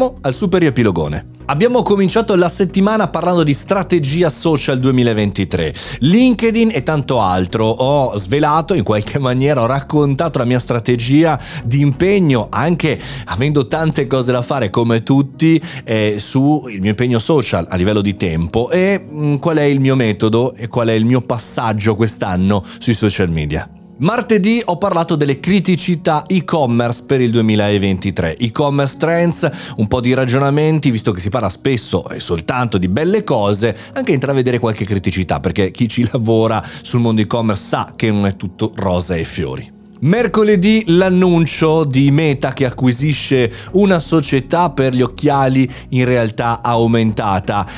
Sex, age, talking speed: male, 30-49, 155 wpm